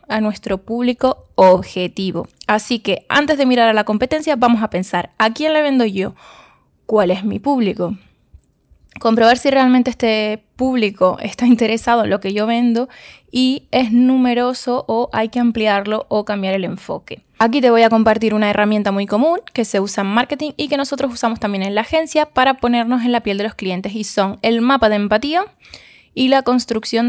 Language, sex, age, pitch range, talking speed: Spanish, female, 20-39, 210-255 Hz, 190 wpm